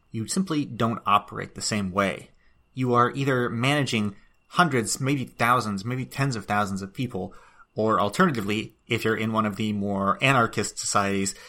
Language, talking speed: English, 160 wpm